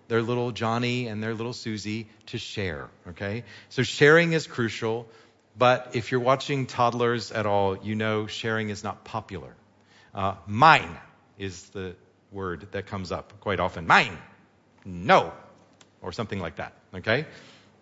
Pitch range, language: 105-150 Hz, English